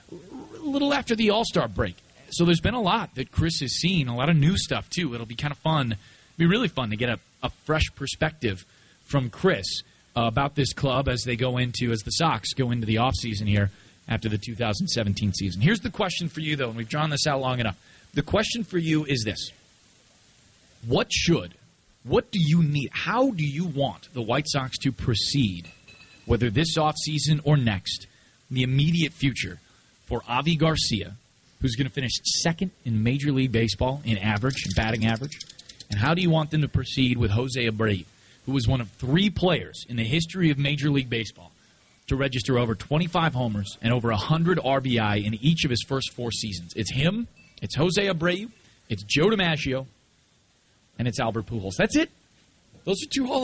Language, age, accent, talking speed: English, 30-49, American, 195 wpm